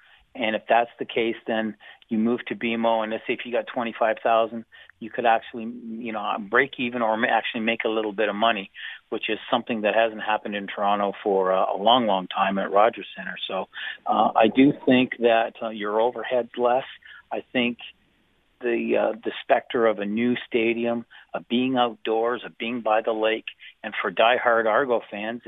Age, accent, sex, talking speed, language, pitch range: 40-59, American, male, 190 wpm, English, 105-115 Hz